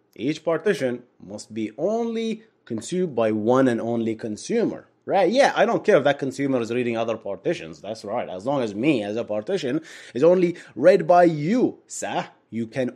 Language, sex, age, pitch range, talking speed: English, male, 30-49, 110-155 Hz, 185 wpm